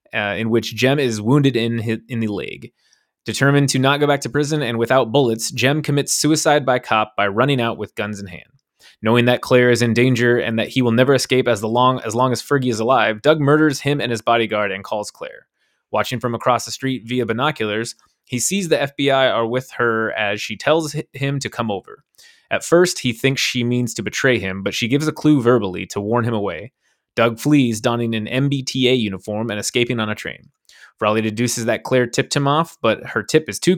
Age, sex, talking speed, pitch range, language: 20-39, male, 225 wpm, 115-140 Hz, English